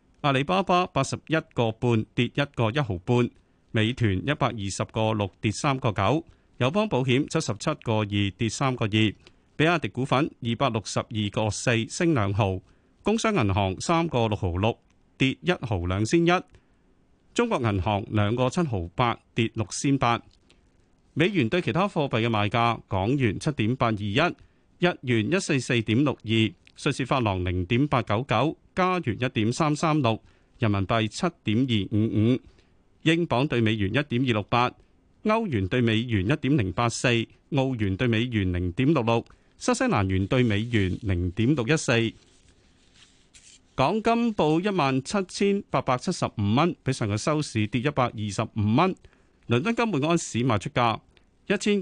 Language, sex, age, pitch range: Chinese, male, 40-59, 105-145 Hz